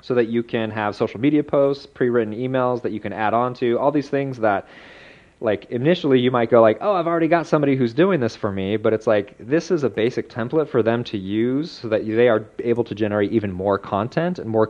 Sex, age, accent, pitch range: male, 30-49, American, 100-130 Hz